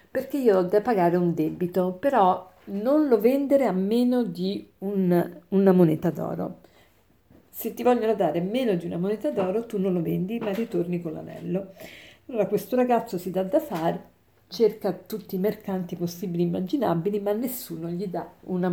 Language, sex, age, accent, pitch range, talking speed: Italian, female, 50-69, native, 175-225 Hz, 175 wpm